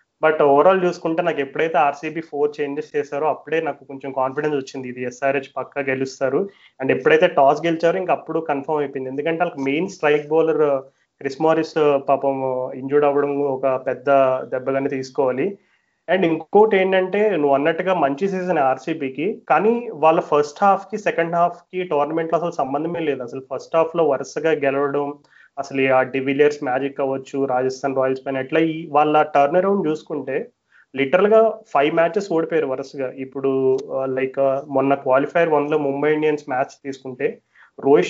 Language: Telugu